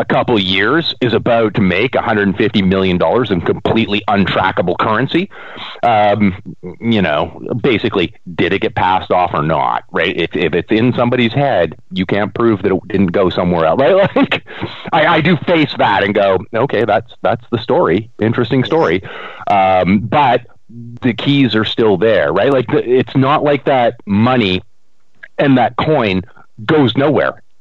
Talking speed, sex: 165 wpm, male